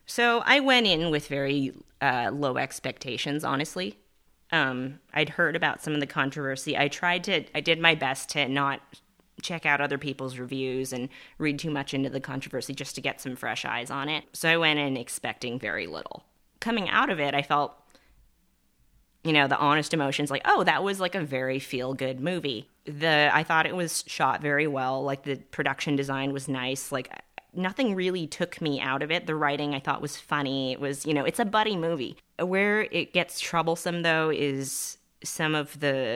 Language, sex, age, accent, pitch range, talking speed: English, female, 30-49, American, 135-165 Hz, 195 wpm